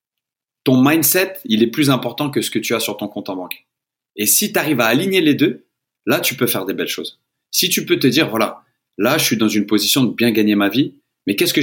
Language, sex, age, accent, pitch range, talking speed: French, male, 30-49, French, 105-140 Hz, 265 wpm